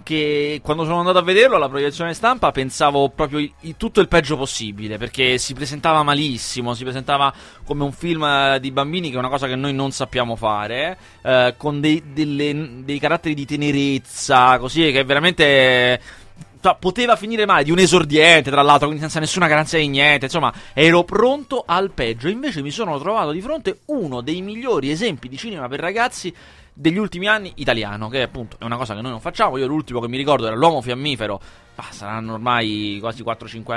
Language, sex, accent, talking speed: Italian, male, native, 185 wpm